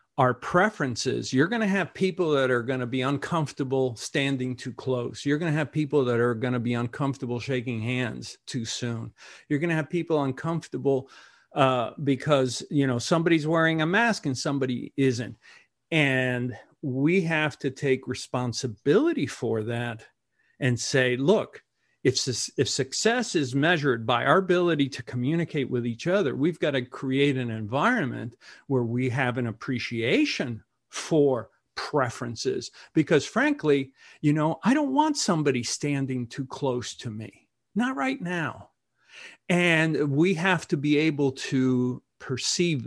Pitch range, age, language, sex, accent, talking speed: 125-160 Hz, 50-69, English, male, American, 155 wpm